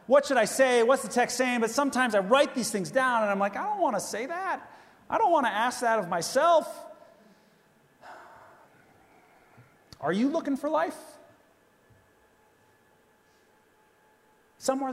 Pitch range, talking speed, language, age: 180-265 Hz, 155 wpm, English, 30-49